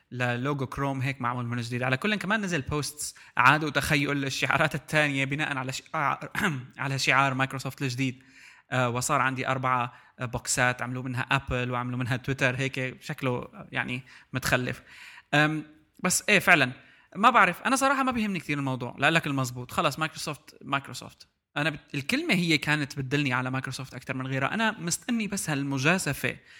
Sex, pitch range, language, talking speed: male, 130-160 Hz, Arabic, 150 wpm